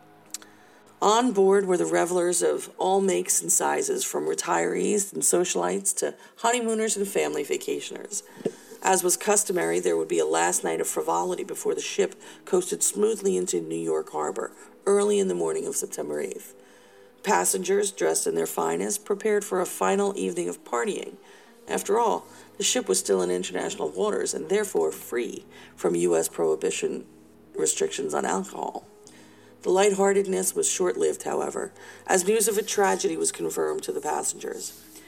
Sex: female